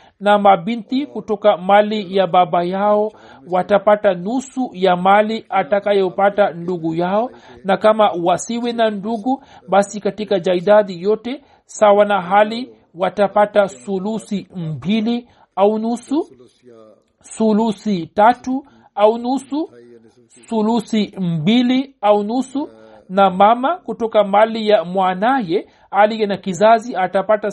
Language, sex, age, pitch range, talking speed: Swahili, male, 60-79, 190-230 Hz, 115 wpm